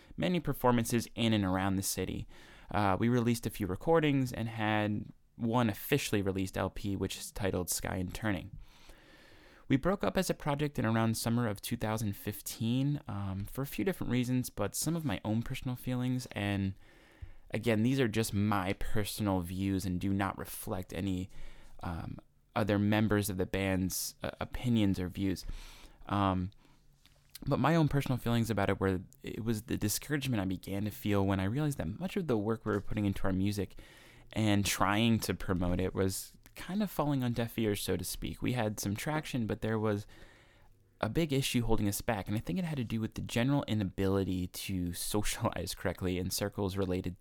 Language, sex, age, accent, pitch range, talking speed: English, male, 20-39, American, 95-120 Hz, 185 wpm